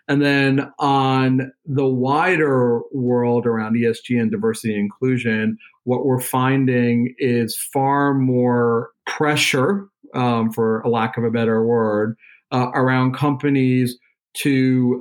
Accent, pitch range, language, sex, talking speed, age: American, 120-130 Hz, English, male, 115 wpm, 40-59